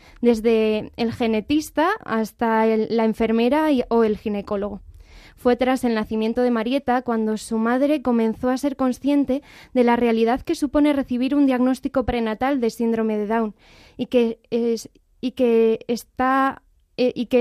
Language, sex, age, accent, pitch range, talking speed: Spanish, female, 20-39, Spanish, 225-265 Hz, 160 wpm